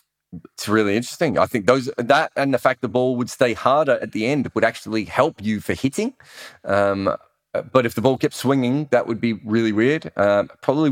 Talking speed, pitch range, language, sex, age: 210 wpm, 100-130 Hz, English, male, 30-49